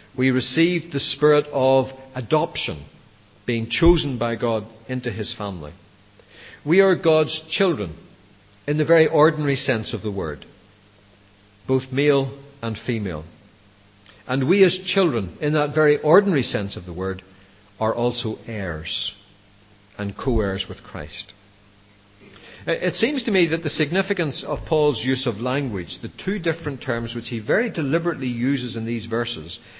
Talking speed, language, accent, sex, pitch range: 145 wpm, English, Irish, male, 105-155 Hz